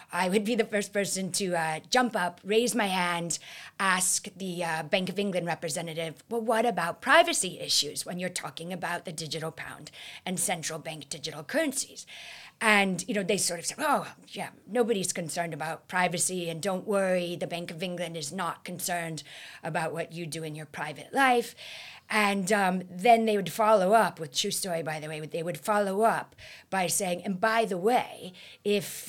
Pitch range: 165-205 Hz